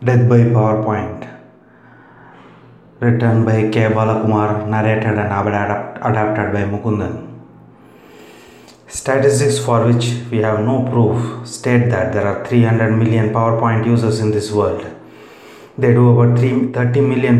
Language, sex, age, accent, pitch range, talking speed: English, male, 30-49, Indian, 105-120 Hz, 120 wpm